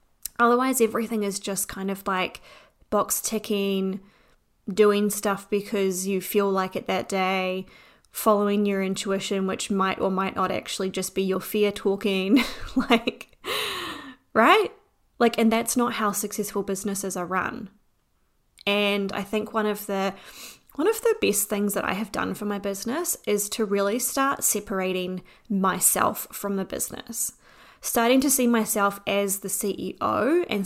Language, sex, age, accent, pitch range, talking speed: English, female, 20-39, Australian, 195-225 Hz, 155 wpm